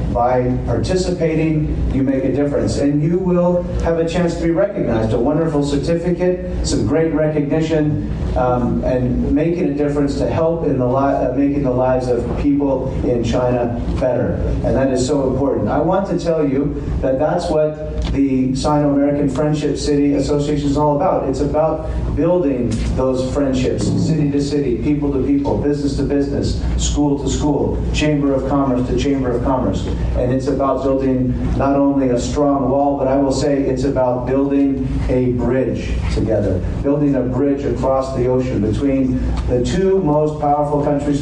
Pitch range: 125-150 Hz